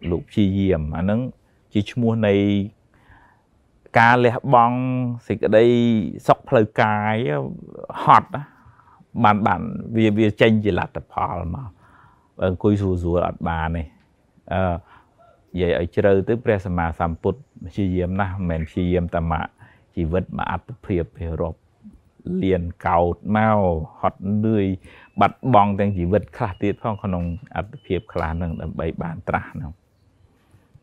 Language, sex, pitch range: English, male, 90-110 Hz